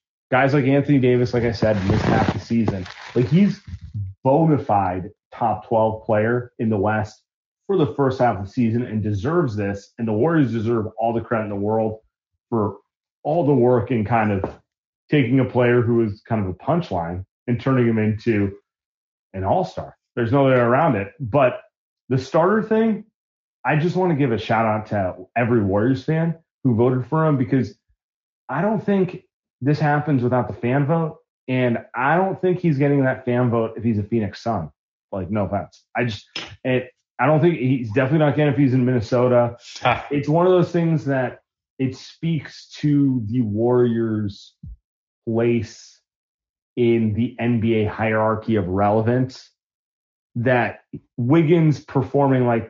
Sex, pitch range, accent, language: male, 110-140 Hz, American, English